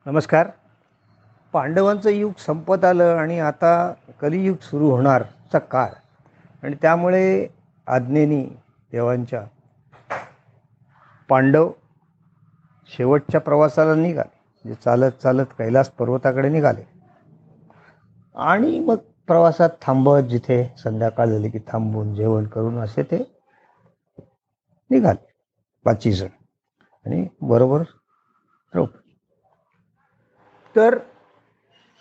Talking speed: 80 wpm